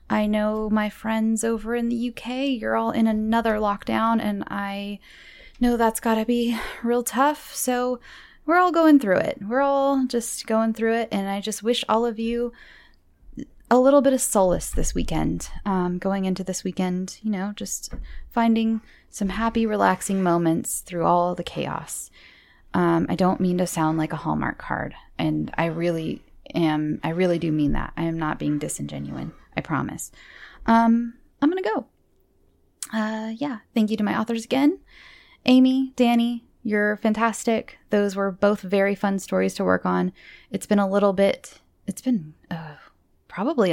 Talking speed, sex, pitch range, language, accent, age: 170 wpm, female, 185-240 Hz, English, American, 10-29